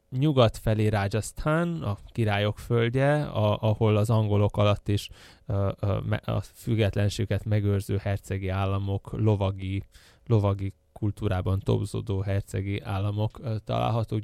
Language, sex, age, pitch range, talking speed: Hungarian, male, 10-29, 100-120 Hz, 110 wpm